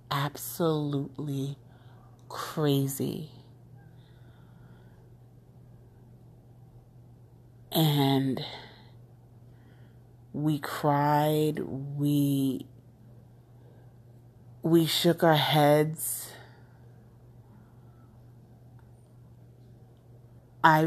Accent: American